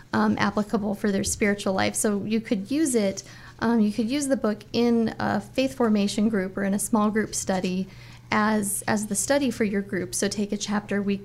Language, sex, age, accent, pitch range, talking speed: English, female, 30-49, American, 200-225 Hz, 215 wpm